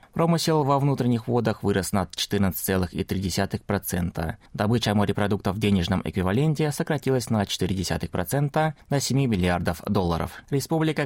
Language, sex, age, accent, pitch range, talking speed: Russian, male, 20-39, native, 95-135 Hz, 110 wpm